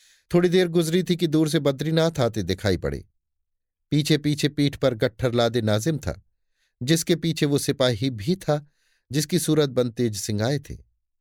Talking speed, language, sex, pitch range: 170 wpm, Hindi, male, 105-155 Hz